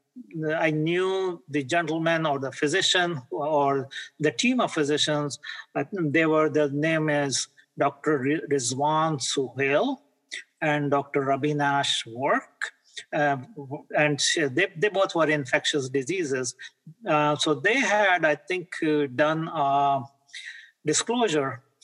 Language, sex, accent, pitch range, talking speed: English, male, Indian, 140-160 Hz, 120 wpm